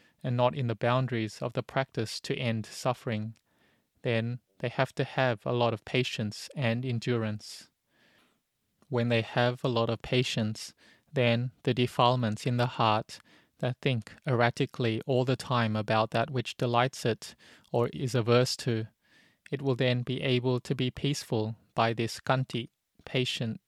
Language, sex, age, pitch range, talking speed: English, male, 20-39, 115-130 Hz, 155 wpm